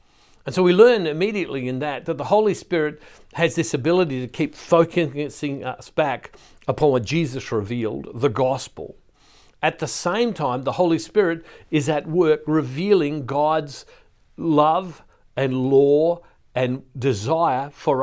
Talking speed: 145 wpm